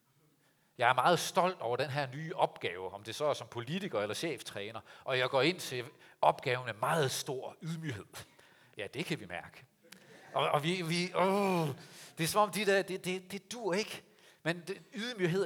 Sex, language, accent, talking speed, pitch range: male, Danish, native, 195 wpm, 140-175 Hz